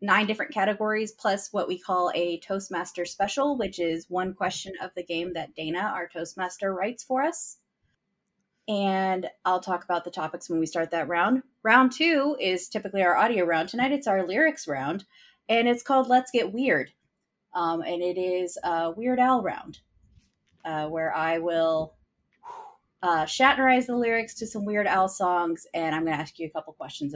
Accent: American